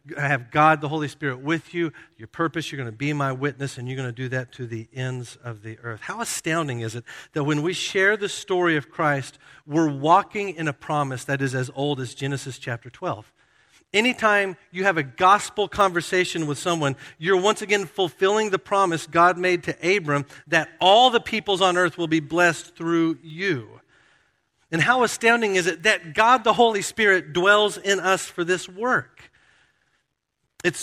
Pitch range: 135-185 Hz